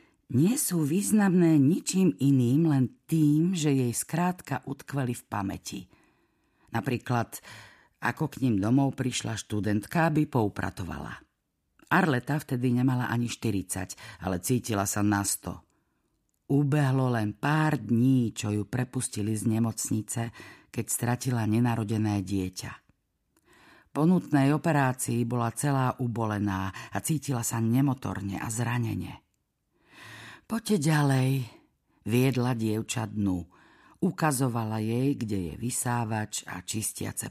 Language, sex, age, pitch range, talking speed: Slovak, female, 50-69, 105-140 Hz, 110 wpm